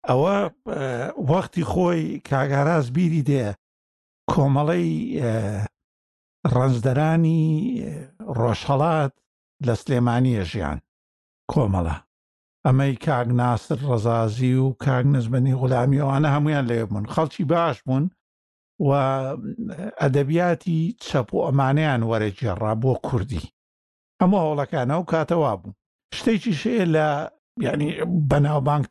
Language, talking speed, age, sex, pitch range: Arabic, 90 wpm, 60-79, male, 120-155 Hz